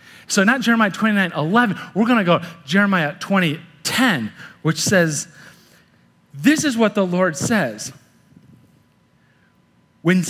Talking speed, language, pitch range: 120 wpm, English, 135-195 Hz